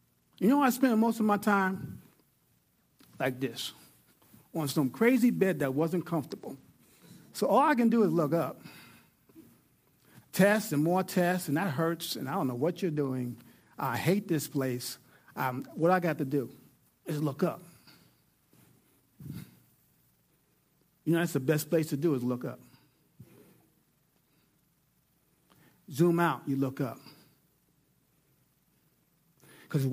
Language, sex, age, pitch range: English, male, 50-69, 135-180 Hz